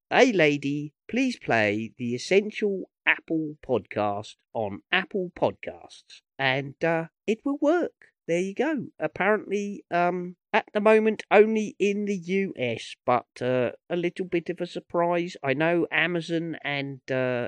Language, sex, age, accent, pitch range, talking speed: English, male, 40-59, British, 130-185 Hz, 140 wpm